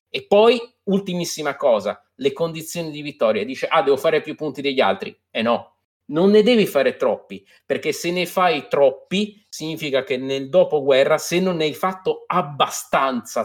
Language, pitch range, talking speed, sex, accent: Italian, 140-210 Hz, 170 wpm, male, native